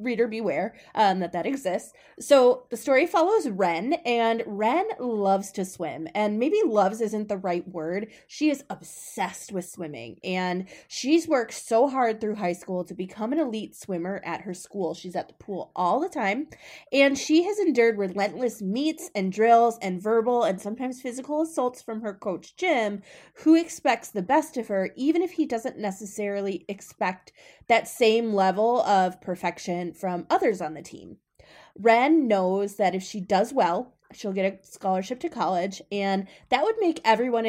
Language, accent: English, American